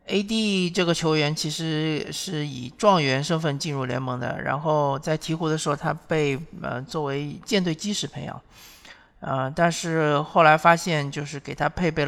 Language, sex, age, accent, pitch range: Chinese, male, 50-69, native, 135-165 Hz